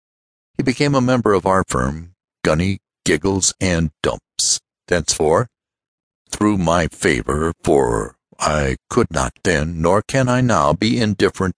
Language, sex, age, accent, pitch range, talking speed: English, male, 60-79, American, 85-120 Hz, 130 wpm